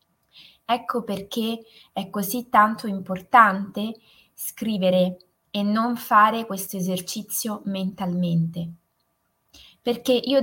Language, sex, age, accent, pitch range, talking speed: Italian, female, 20-39, native, 180-230 Hz, 85 wpm